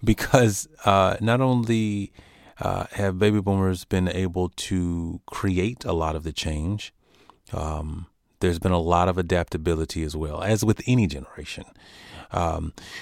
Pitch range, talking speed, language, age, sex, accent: 80-95 Hz, 145 wpm, English, 30-49, male, American